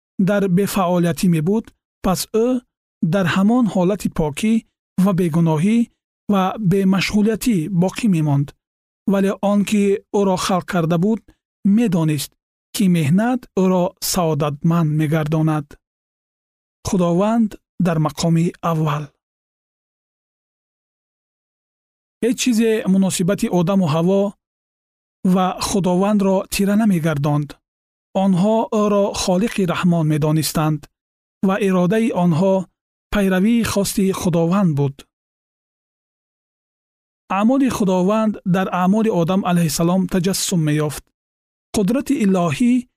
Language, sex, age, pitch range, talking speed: Persian, male, 40-59, 170-210 Hz, 100 wpm